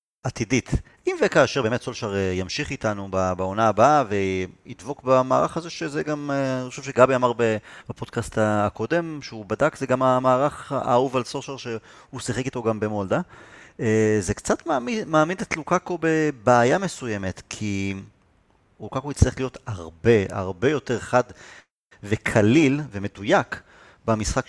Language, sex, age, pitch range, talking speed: Hebrew, male, 30-49, 105-140 Hz, 125 wpm